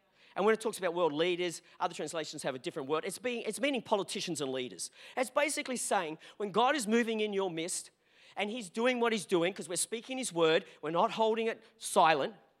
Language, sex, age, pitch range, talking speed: English, male, 40-59, 230-290 Hz, 215 wpm